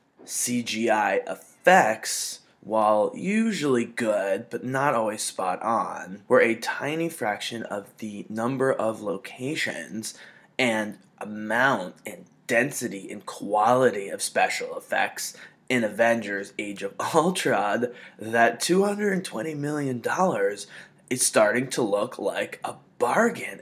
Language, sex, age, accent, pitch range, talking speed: English, male, 20-39, American, 110-150 Hz, 110 wpm